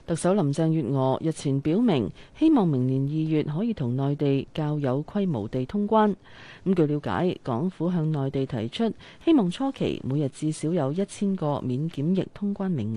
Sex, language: female, Chinese